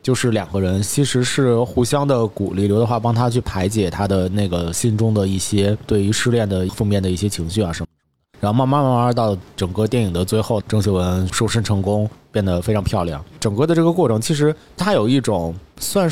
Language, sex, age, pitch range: Chinese, male, 30-49, 95-135 Hz